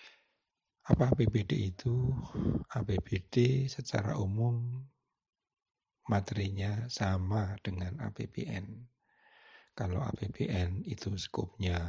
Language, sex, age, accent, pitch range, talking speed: Indonesian, male, 60-79, native, 95-125 Hz, 70 wpm